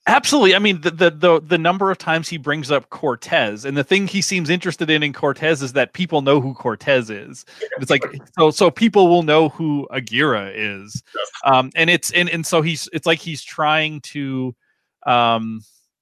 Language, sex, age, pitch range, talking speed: English, male, 30-49, 125-165 Hz, 200 wpm